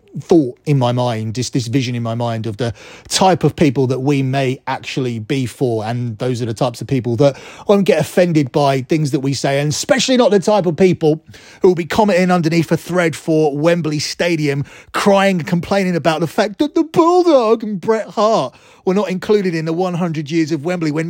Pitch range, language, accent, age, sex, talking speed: 135-175 Hz, English, British, 30-49, male, 215 wpm